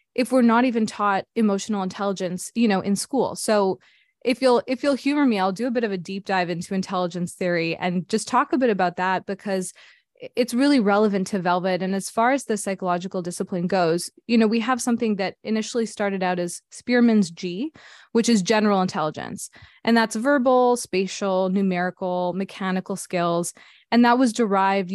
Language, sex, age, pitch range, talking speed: English, female, 20-39, 185-235 Hz, 185 wpm